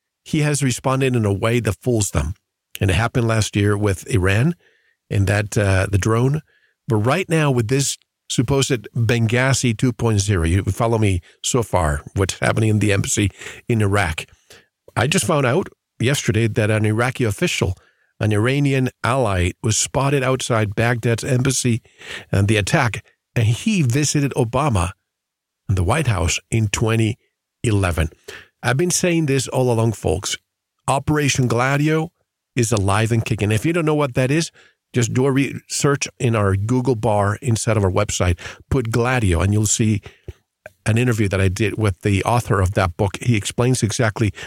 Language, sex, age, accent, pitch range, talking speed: English, male, 50-69, American, 105-130 Hz, 165 wpm